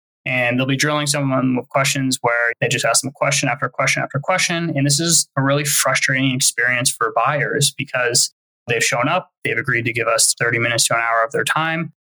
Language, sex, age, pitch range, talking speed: English, male, 20-39, 125-150 Hz, 215 wpm